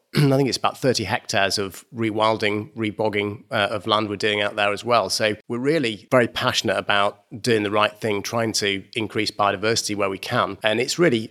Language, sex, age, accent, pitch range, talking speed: English, male, 30-49, British, 105-120 Hz, 195 wpm